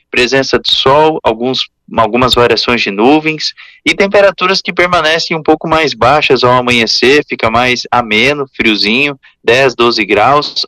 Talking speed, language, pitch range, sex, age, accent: 135 wpm, Portuguese, 125-165 Hz, male, 20-39, Brazilian